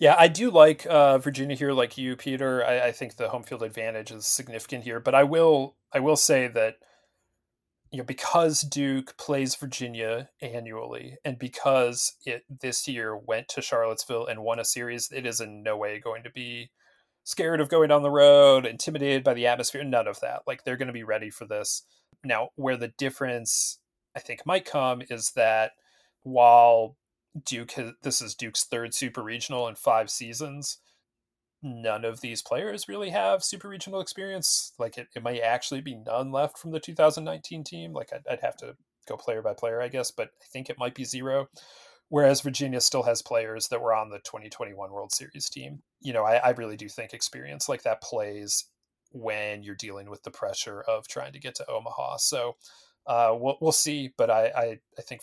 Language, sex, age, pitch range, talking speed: English, male, 30-49, 115-145 Hz, 195 wpm